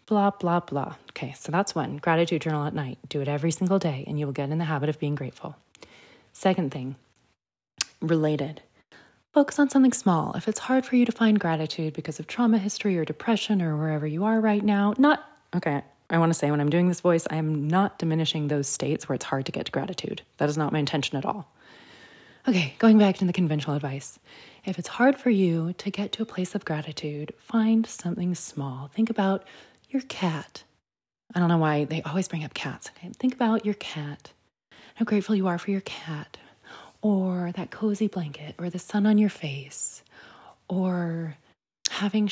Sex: female